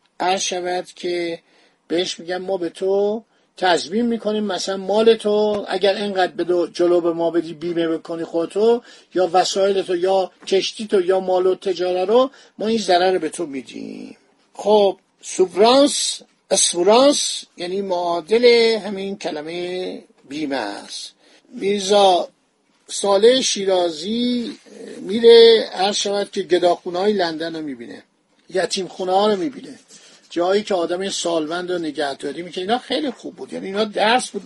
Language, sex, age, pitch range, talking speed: Persian, male, 50-69, 175-220 Hz, 140 wpm